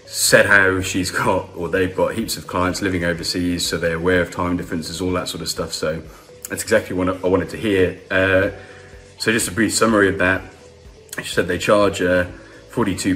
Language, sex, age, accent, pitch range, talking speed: English, male, 20-39, British, 85-95 Hz, 210 wpm